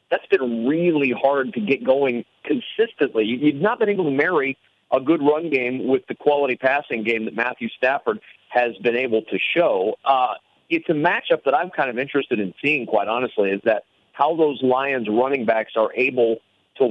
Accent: American